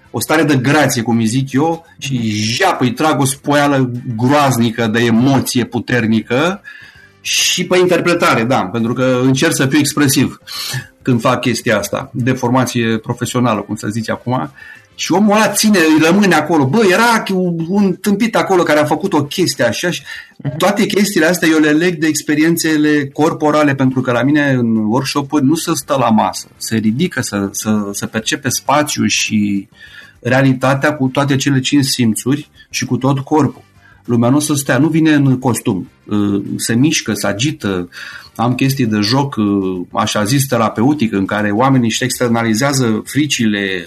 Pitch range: 115-150 Hz